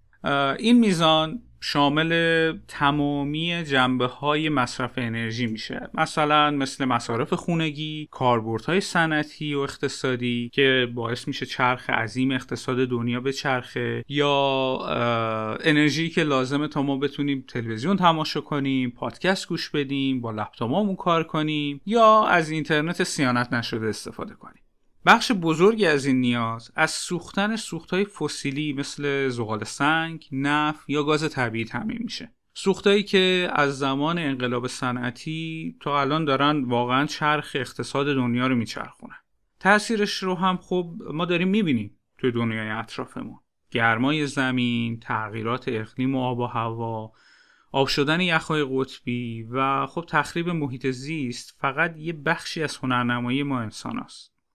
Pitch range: 125-160 Hz